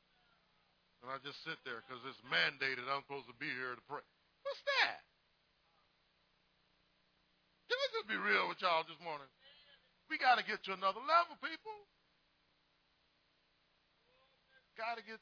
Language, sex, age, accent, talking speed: English, male, 40-59, American, 145 wpm